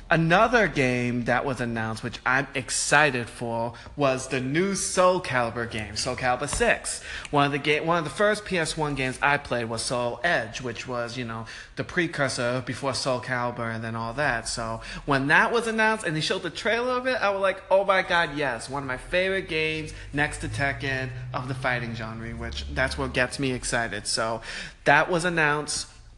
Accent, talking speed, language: American, 195 wpm, English